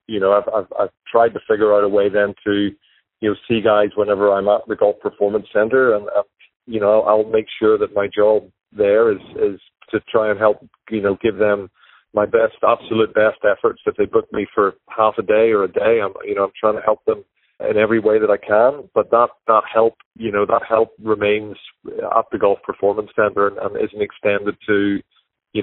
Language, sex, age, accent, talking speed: English, male, 40-59, American, 225 wpm